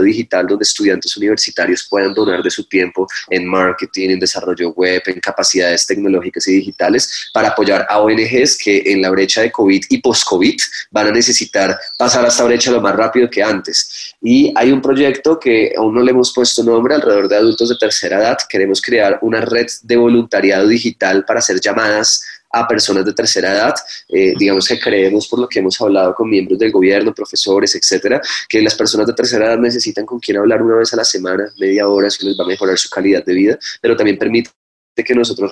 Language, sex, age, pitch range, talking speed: Spanish, male, 20-39, 95-125 Hz, 205 wpm